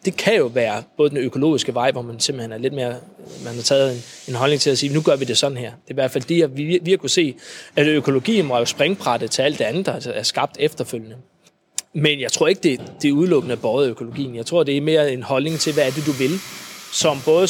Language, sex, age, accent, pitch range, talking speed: Danish, male, 20-39, native, 130-175 Hz, 270 wpm